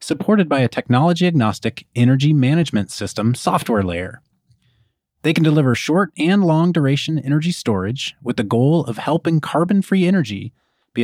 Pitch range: 120-175 Hz